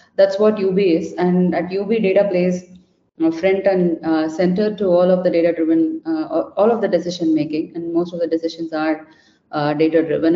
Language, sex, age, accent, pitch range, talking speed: English, female, 30-49, Indian, 170-195 Hz, 215 wpm